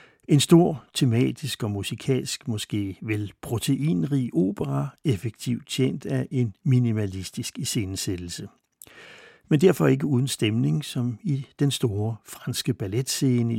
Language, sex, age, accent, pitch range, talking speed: Danish, male, 60-79, native, 110-140 Hz, 115 wpm